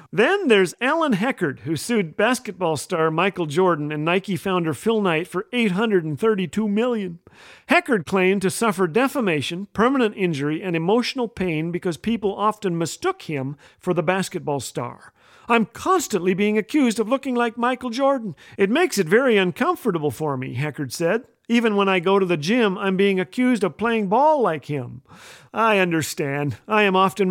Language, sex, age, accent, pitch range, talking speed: English, male, 50-69, American, 165-225 Hz, 165 wpm